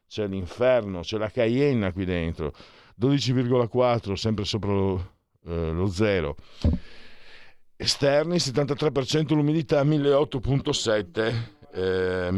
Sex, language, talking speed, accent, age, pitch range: male, Italian, 80 wpm, native, 50-69, 90-125 Hz